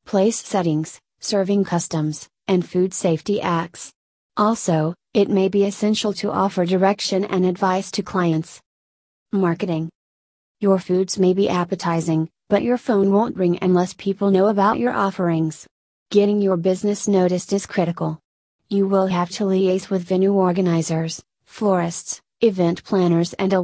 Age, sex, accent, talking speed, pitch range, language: 30-49, female, American, 140 wpm, 175-200 Hz, English